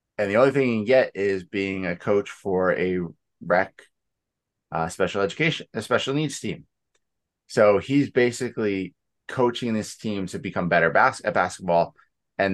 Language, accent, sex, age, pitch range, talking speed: English, American, male, 20-39, 90-120 Hz, 165 wpm